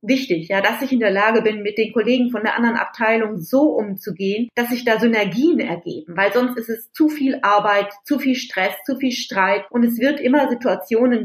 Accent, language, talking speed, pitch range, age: German, German, 215 wpm, 185-235 Hz, 30-49